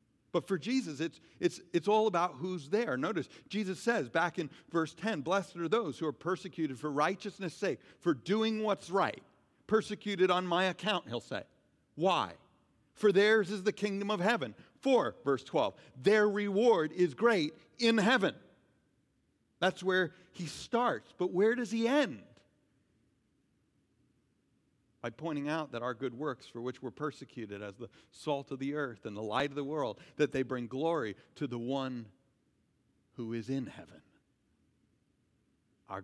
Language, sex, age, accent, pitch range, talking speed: English, male, 50-69, American, 130-195 Hz, 160 wpm